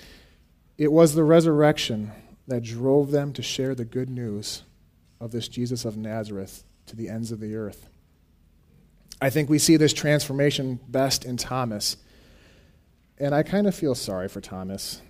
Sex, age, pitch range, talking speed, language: male, 40-59, 95-145 Hz, 160 wpm, English